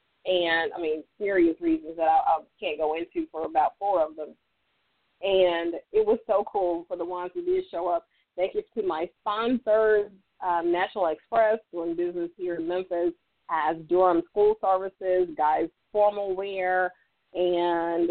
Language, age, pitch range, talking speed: English, 30-49, 170-210 Hz, 160 wpm